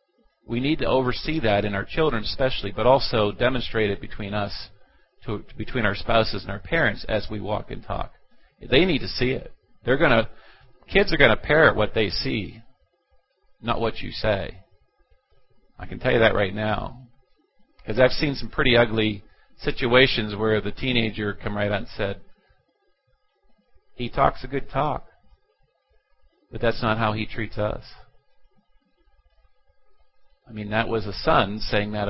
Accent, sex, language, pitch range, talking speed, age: American, male, English, 105-130 Hz, 165 wpm, 40-59